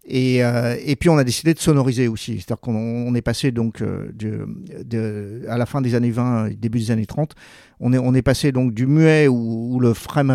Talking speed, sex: 220 wpm, male